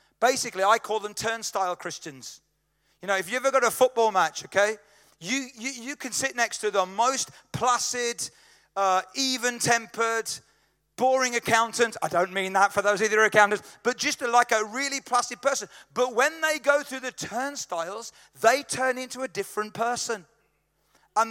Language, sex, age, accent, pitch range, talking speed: English, male, 40-59, British, 195-245 Hz, 165 wpm